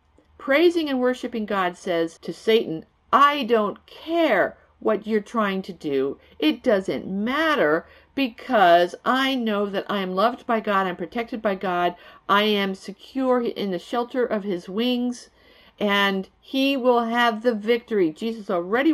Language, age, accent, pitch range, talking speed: English, 50-69, American, 195-260 Hz, 150 wpm